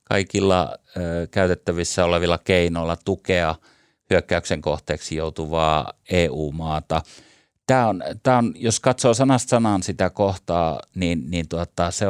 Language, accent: Finnish, native